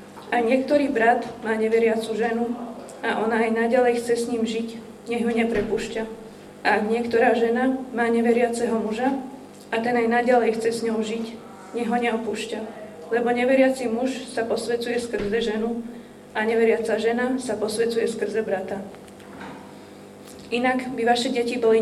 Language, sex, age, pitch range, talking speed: Slovak, female, 20-39, 225-240 Hz, 145 wpm